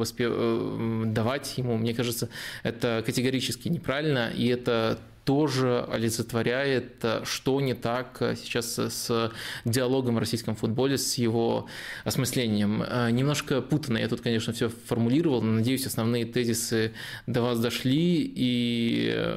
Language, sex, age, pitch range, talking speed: Russian, male, 20-39, 115-130 Hz, 120 wpm